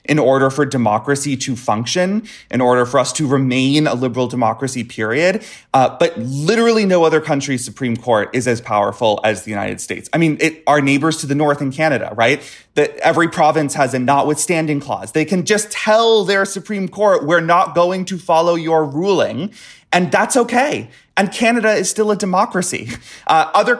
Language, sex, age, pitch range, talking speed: English, male, 30-49, 140-195 Hz, 185 wpm